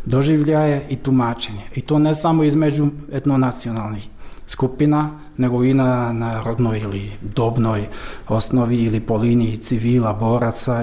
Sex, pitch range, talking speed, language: male, 120-155 Hz, 120 wpm, Croatian